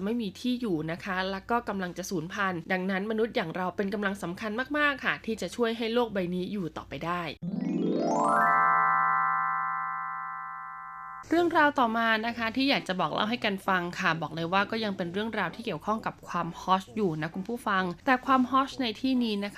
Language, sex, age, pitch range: Thai, female, 20-39, 175-235 Hz